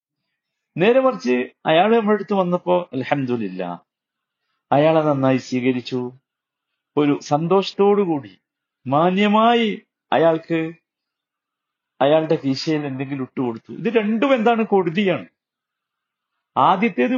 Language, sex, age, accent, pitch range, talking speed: Malayalam, male, 50-69, native, 125-195 Hz, 75 wpm